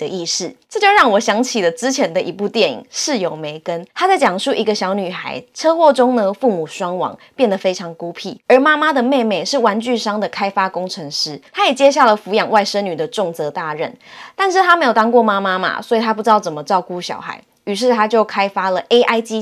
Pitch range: 185-250 Hz